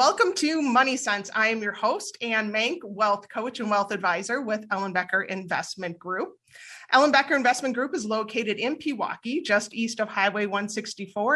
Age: 30-49